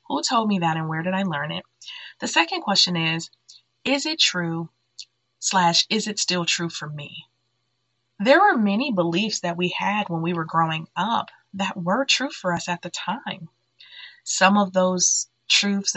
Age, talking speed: 20-39, 180 wpm